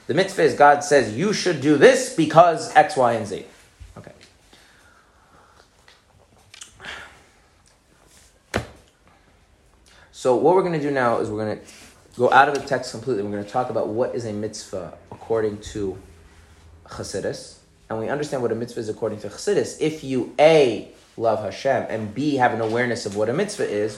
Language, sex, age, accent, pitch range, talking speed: English, male, 30-49, American, 100-130 Hz, 175 wpm